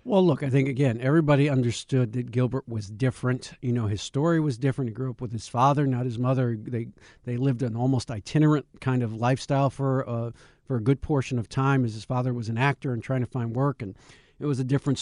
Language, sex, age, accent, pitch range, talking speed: English, male, 50-69, American, 130-160 Hz, 235 wpm